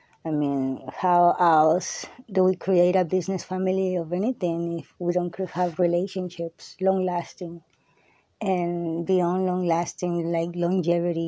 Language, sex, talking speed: English, female, 120 wpm